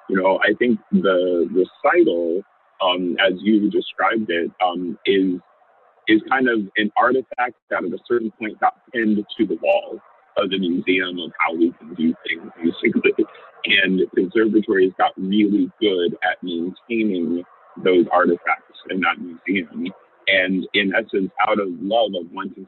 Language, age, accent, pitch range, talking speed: English, 40-59, American, 90-130 Hz, 155 wpm